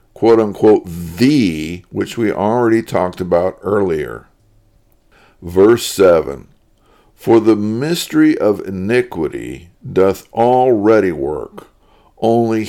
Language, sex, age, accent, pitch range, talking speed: English, male, 50-69, American, 90-110 Hz, 90 wpm